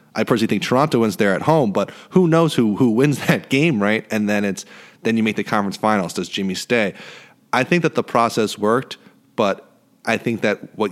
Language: English